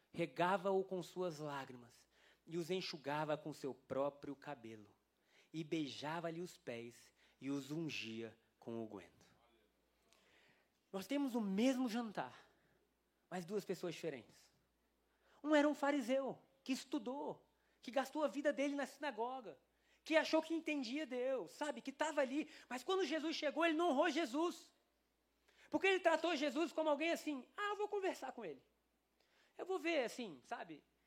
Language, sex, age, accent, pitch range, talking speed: Portuguese, male, 20-39, Brazilian, 180-290 Hz, 150 wpm